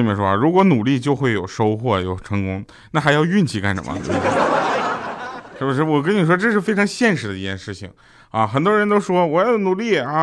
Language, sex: Chinese, male